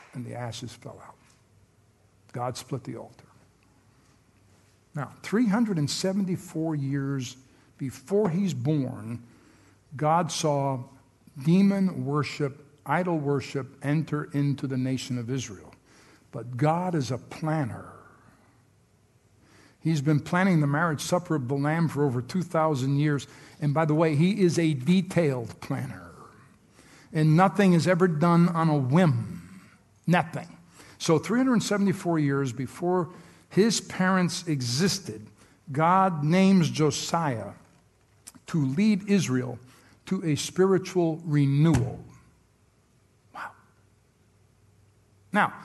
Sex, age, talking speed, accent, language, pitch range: male, 60-79, 110 wpm, American, English, 125-180 Hz